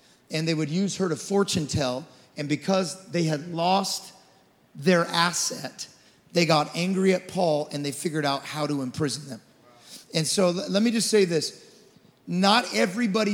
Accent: American